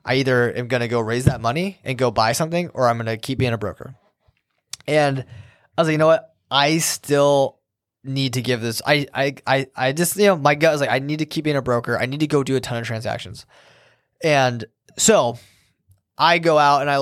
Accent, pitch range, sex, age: American, 115-140 Hz, male, 20-39